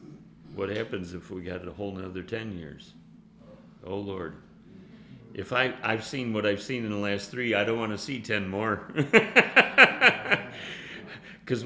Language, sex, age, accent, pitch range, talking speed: English, male, 40-59, American, 105-150 Hz, 160 wpm